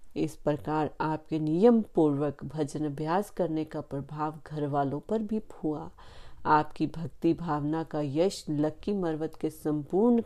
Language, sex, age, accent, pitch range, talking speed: Hindi, female, 40-59, native, 150-185 Hz, 125 wpm